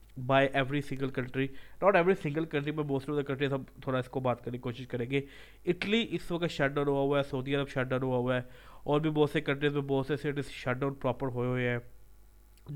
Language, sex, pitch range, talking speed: Urdu, male, 125-150 Hz, 200 wpm